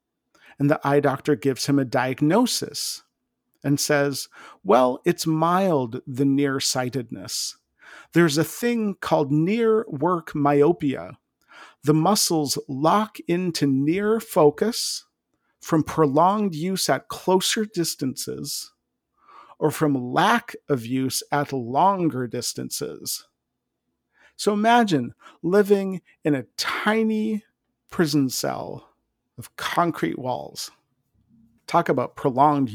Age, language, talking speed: 50-69, English, 100 wpm